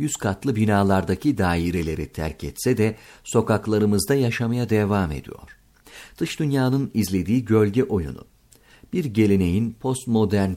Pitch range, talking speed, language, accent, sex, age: 90-120 Hz, 110 wpm, Turkish, native, male, 50-69